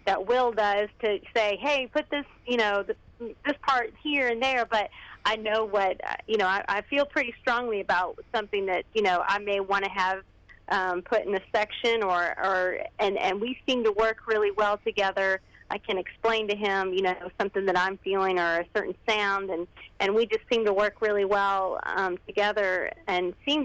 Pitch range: 190-225 Hz